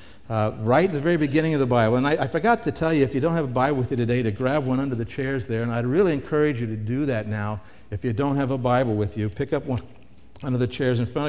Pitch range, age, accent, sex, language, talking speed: 110-150 Hz, 60-79, American, male, English, 305 wpm